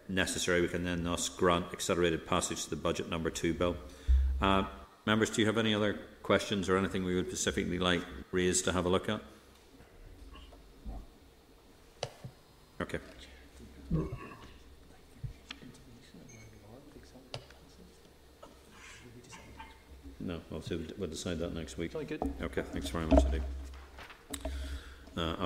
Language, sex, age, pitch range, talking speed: English, male, 50-69, 85-105 Hz, 110 wpm